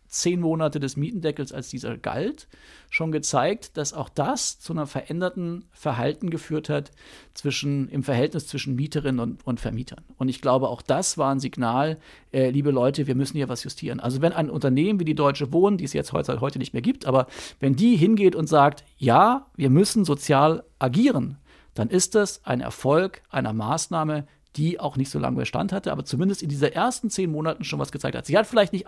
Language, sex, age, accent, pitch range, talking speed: German, male, 40-59, German, 135-170 Hz, 205 wpm